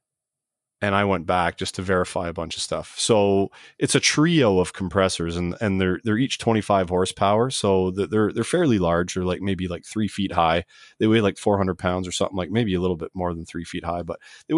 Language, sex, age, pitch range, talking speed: English, male, 30-49, 90-115 Hz, 235 wpm